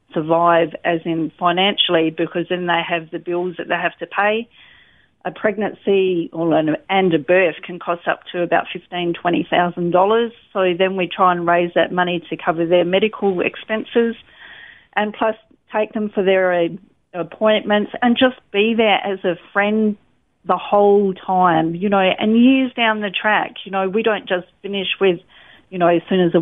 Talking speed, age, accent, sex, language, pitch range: 180 wpm, 40-59, Australian, female, English, 175-200 Hz